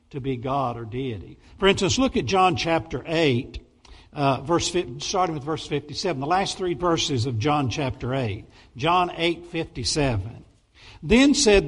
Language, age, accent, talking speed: English, 60-79, American, 160 wpm